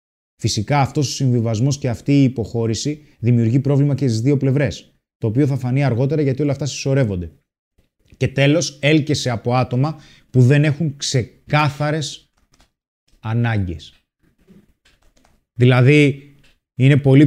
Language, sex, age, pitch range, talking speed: Greek, male, 20-39, 115-140 Hz, 125 wpm